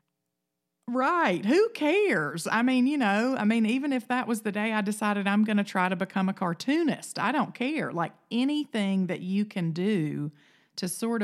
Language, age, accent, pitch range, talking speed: English, 40-59, American, 155-195 Hz, 190 wpm